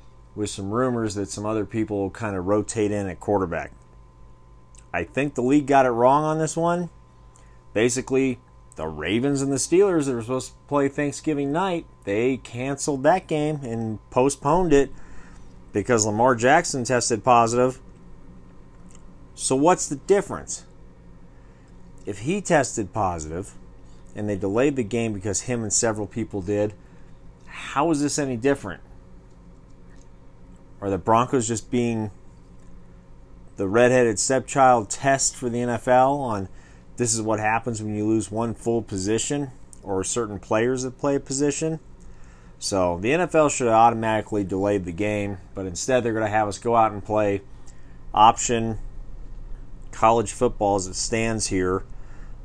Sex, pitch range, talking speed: male, 95-130 Hz, 145 wpm